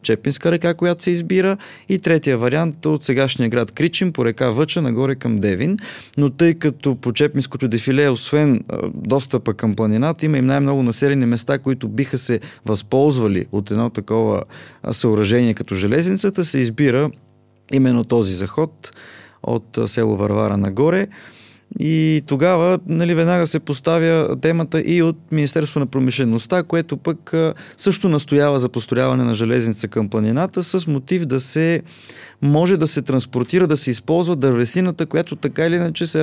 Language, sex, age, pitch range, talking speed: Bulgarian, male, 20-39, 120-160 Hz, 150 wpm